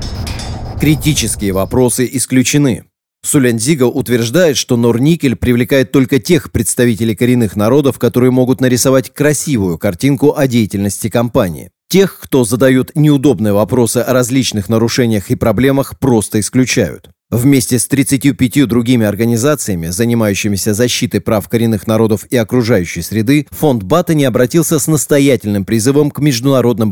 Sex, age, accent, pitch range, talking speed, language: male, 30-49, native, 110-140 Hz, 125 wpm, Russian